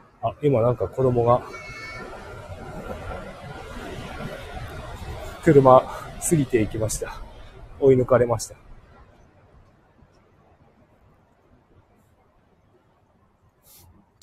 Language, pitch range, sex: Japanese, 90-120 Hz, male